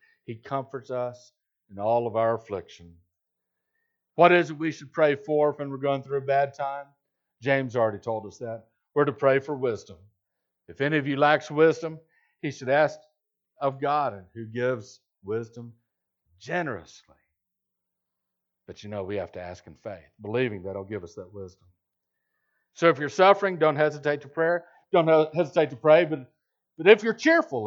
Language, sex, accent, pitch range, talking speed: English, male, American, 115-175 Hz, 175 wpm